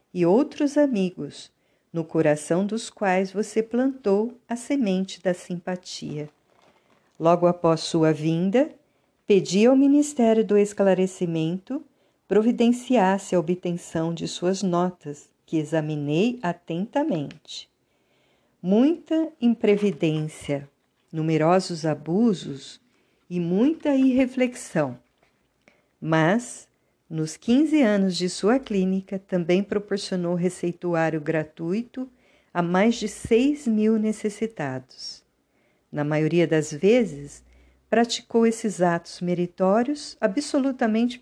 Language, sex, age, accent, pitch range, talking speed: Portuguese, female, 50-69, Brazilian, 170-230 Hz, 95 wpm